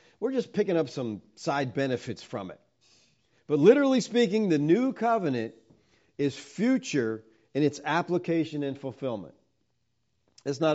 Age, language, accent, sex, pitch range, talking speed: 50-69, English, American, male, 115-160 Hz, 135 wpm